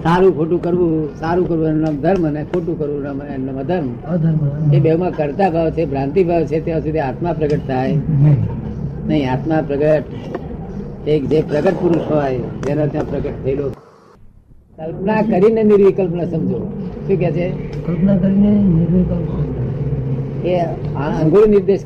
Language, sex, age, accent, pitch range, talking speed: English, female, 50-69, Indian, 145-165 Hz, 80 wpm